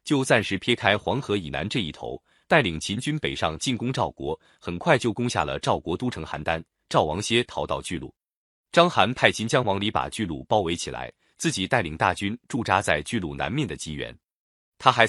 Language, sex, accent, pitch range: Chinese, male, native, 85-130 Hz